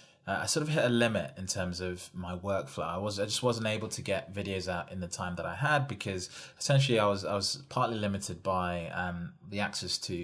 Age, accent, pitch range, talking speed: 20-39, British, 95-130 Hz, 240 wpm